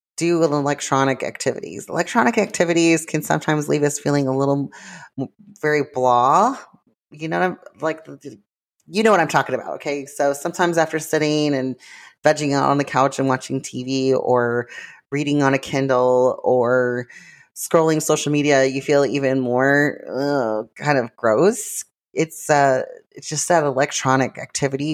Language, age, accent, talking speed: English, 30-49, American, 150 wpm